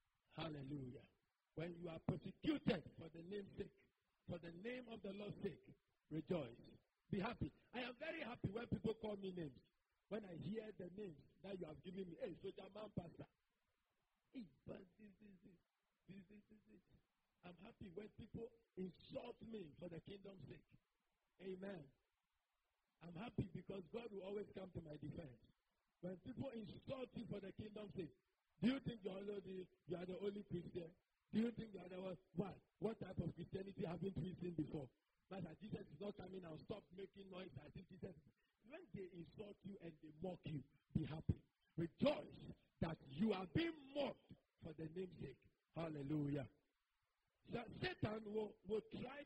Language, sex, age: English, male, 50-69